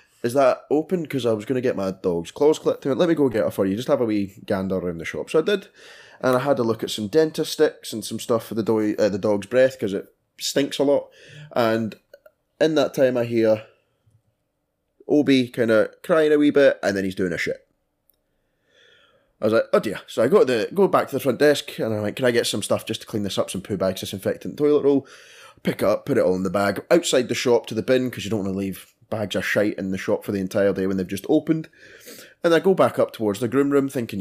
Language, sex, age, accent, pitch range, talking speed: English, male, 20-39, British, 100-140 Hz, 275 wpm